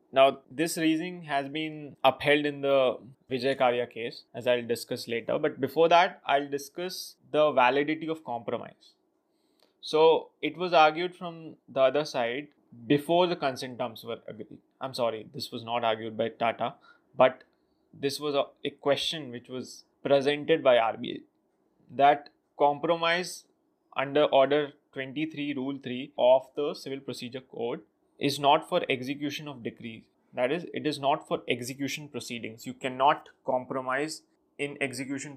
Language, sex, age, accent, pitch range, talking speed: English, male, 20-39, Indian, 125-155 Hz, 150 wpm